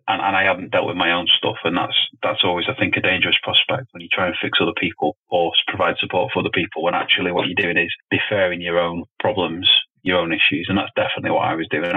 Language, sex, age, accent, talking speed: English, male, 30-49, British, 255 wpm